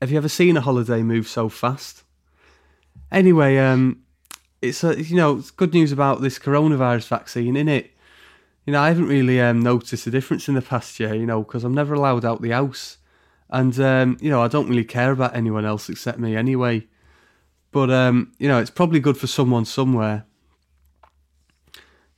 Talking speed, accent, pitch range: 190 wpm, British, 120-145 Hz